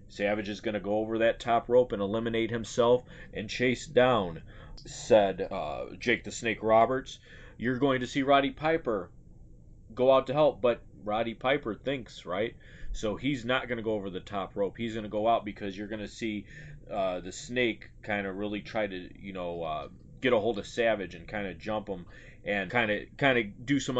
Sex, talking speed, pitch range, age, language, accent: male, 210 wpm, 110-135 Hz, 30-49, English, American